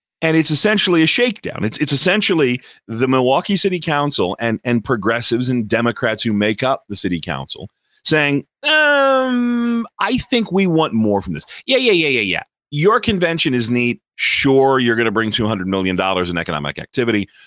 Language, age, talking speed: English, 40-59, 175 wpm